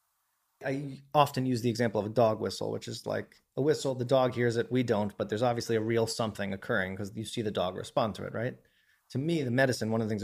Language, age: English, 20-39